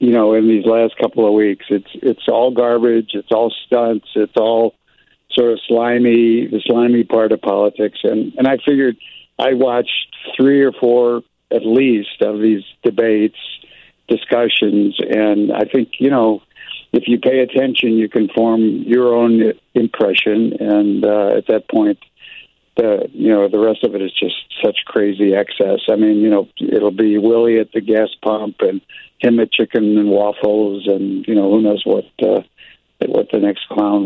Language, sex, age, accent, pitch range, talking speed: English, male, 60-79, American, 105-120 Hz, 175 wpm